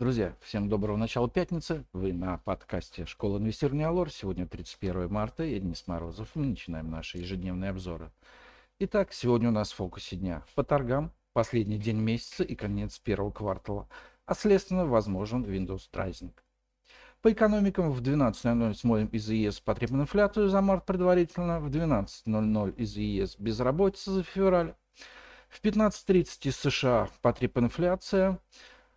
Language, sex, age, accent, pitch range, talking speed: Russian, male, 50-69, native, 100-170 Hz, 140 wpm